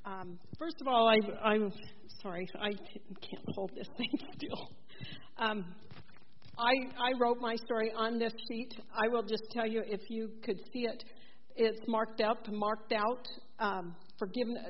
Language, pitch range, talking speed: English, 185-220 Hz, 150 wpm